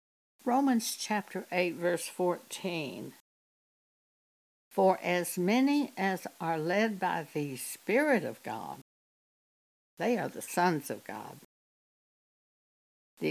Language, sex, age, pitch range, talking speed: English, female, 60-79, 150-205 Hz, 105 wpm